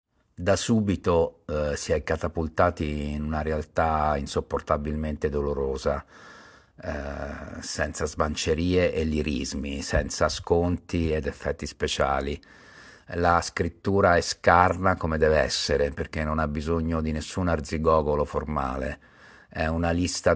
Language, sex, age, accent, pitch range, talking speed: Italian, male, 50-69, native, 75-85 Hz, 115 wpm